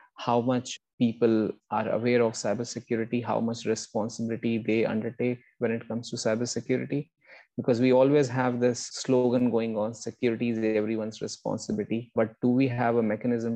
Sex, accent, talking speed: male, Indian, 155 wpm